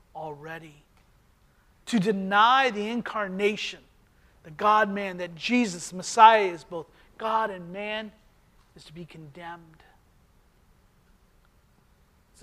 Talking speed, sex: 95 wpm, male